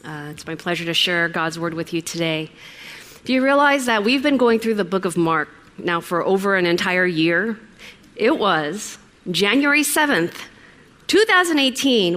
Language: English